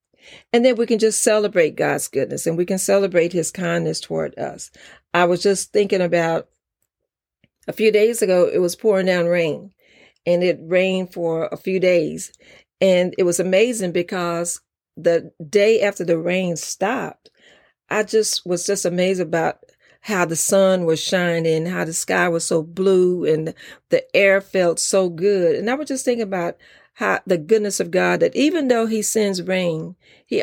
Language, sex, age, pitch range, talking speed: English, female, 40-59, 170-215 Hz, 175 wpm